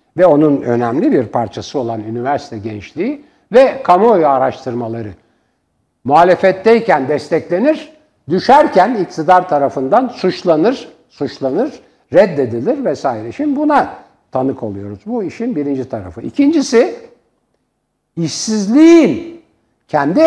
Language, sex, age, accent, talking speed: Turkish, male, 60-79, native, 90 wpm